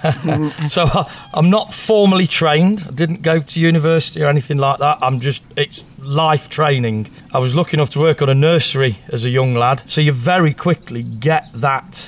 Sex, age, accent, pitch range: male, 40-59, British, 130-160 Hz